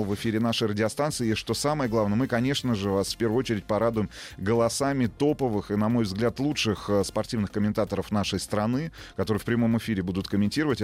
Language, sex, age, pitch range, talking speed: Russian, male, 30-49, 100-120 Hz, 185 wpm